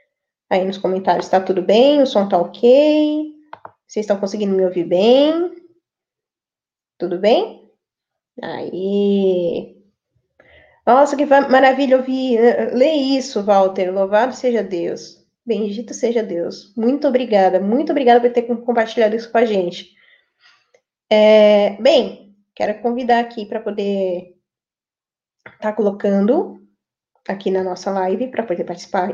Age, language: 10-29, Portuguese